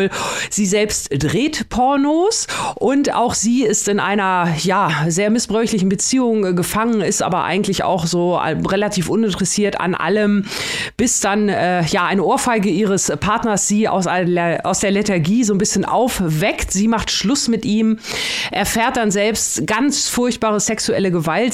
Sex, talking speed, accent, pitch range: female, 140 wpm, German, 180-220 Hz